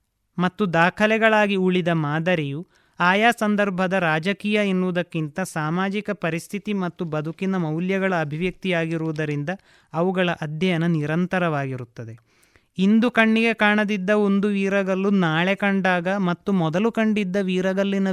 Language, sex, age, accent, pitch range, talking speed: Kannada, male, 30-49, native, 165-200 Hz, 90 wpm